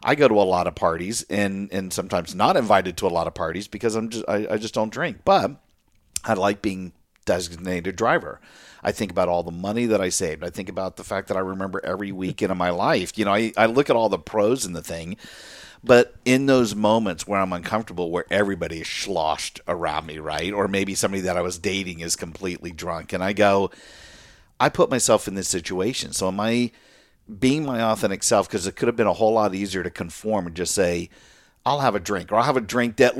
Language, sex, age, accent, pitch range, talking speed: English, male, 50-69, American, 95-115 Hz, 235 wpm